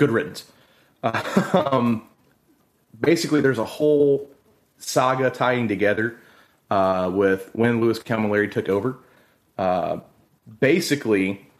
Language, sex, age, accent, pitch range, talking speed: English, male, 30-49, American, 100-125 Hz, 105 wpm